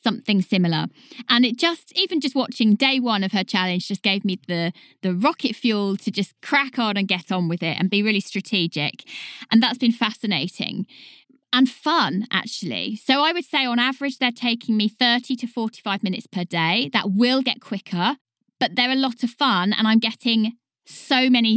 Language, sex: English, female